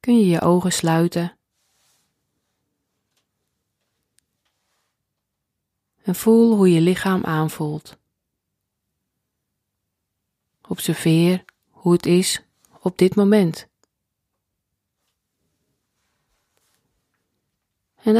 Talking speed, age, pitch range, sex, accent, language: 65 wpm, 30-49, 160-190 Hz, female, Dutch, Dutch